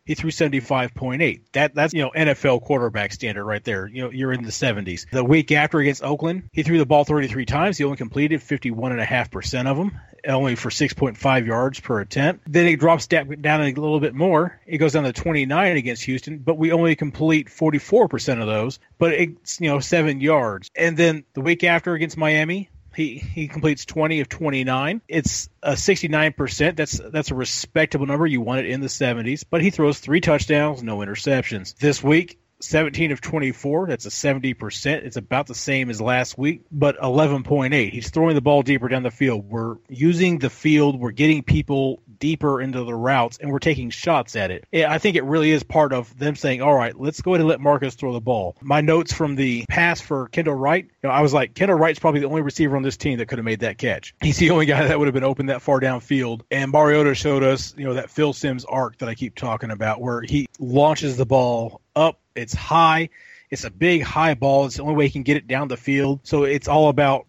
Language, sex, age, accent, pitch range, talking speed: English, male, 40-59, American, 130-155 Hz, 220 wpm